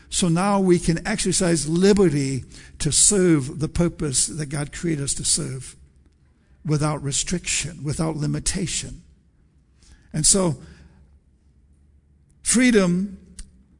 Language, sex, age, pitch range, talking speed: English, male, 60-79, 125-180 Hz, 100 wpm